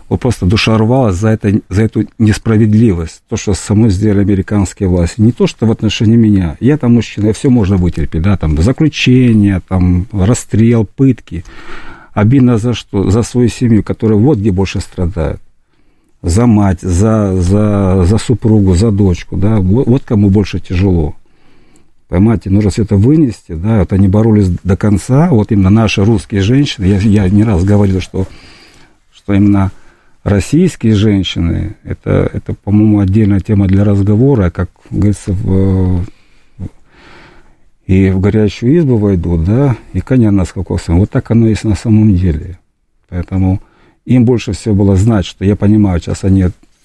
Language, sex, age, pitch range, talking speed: Russian, male, 50-69, 95-110 Hz, 155 wpm